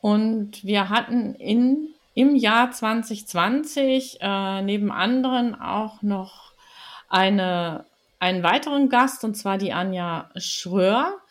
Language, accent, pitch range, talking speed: German, German, 190-240 Hz, 110 wpm